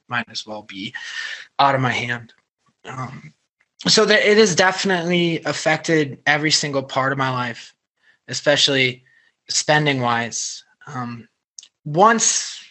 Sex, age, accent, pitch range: male, 20-39, American, 120-150 Hz